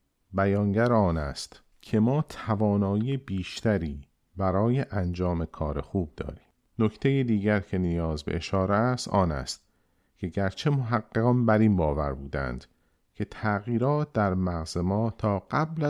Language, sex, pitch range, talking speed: Persian, male, 85-120 Hz, 130 wpm